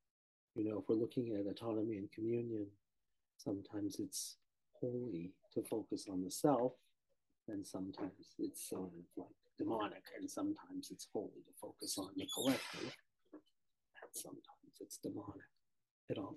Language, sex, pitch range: English, male, 105-150 Hz